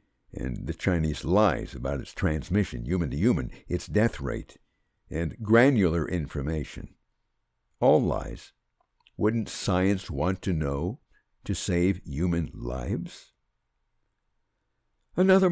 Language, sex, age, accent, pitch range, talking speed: English, male, 60-79, American, 75-95 Hz, 100 wpm